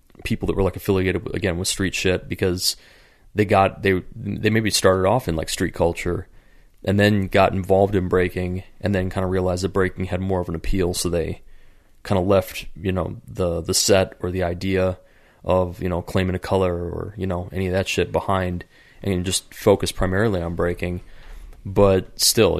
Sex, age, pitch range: male, 20-39, 90-95 Hz